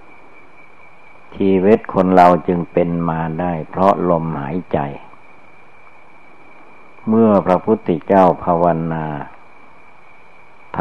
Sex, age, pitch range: male, 60-79, 80-95 Hz